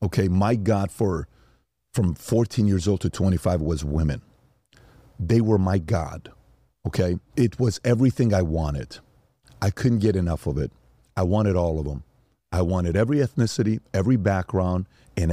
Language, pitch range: English, 95-135 Hz